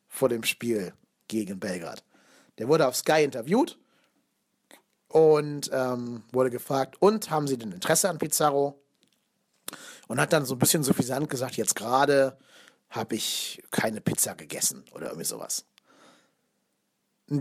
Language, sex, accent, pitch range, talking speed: German, male, German, 130-160 Hz, 140 wpm